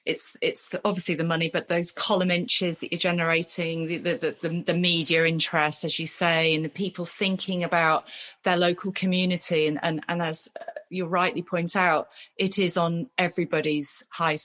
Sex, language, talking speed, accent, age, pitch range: female, English, 175 wpm, British, 30-49, 165-195 Hz